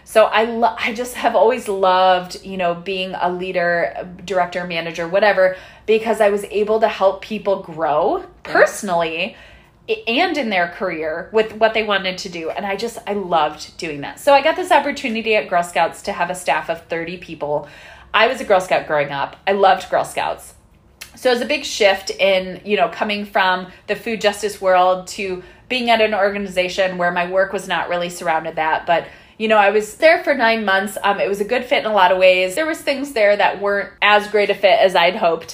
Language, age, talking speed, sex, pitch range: English, 20-39, 215 wpm, female, 175-215 Hz